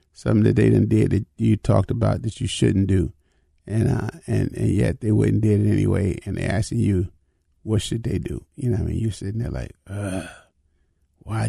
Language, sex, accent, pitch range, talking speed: English, male, American, 80-120 Hz, 220 wpm